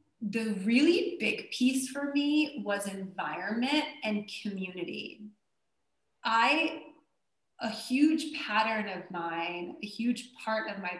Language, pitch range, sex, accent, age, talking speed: English, 180-225 Hz, female, American, 20-39, 115 wpm